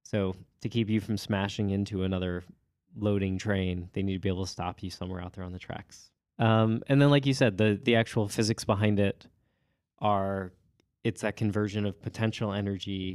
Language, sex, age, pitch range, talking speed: English, male, 20-39, 95-110 Hz, 195 wpm